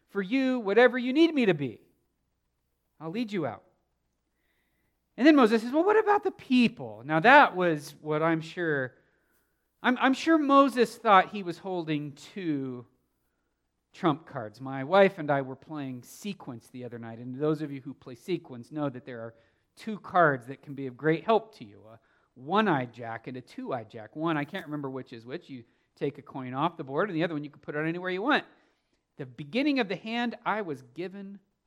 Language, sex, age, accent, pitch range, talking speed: English, male, 40-59, American, 130-210 Hz, 205 wpm